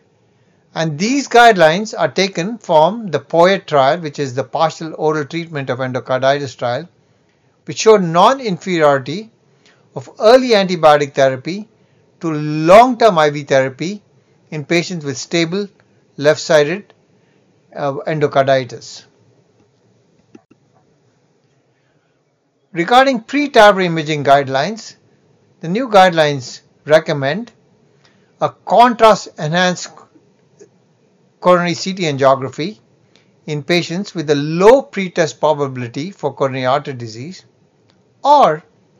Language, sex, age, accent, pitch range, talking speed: English, male, 60-79, Indian, 140-185 Hz, 90 wpm